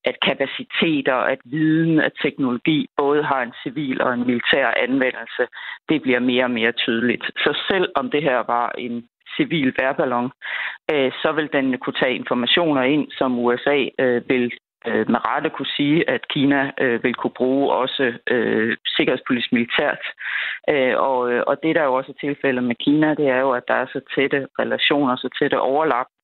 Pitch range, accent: 120-145 Hz, native